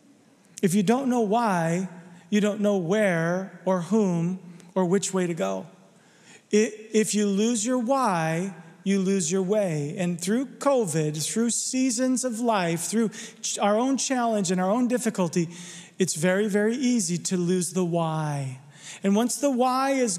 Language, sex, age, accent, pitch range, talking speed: English, male, 40-59, American, 180-225 Hz, 160 wpm